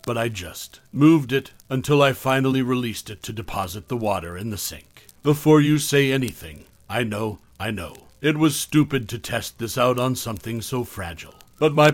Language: English